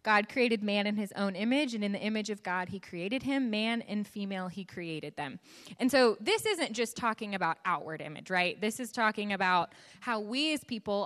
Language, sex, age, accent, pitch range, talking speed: English, female, 20-39, American, 180-225 Hz, 215 wpm